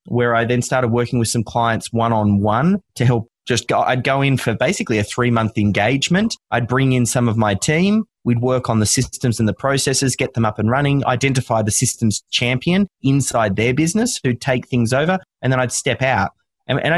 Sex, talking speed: male, 220 wpm